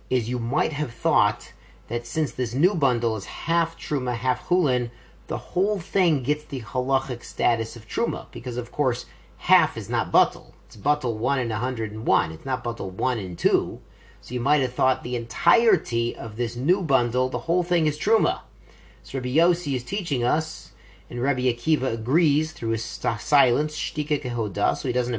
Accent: American